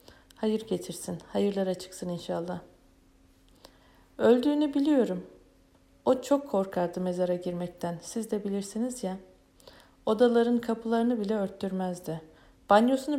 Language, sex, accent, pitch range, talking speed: Turkish, female, native, 175-235 Hz, 95 wpm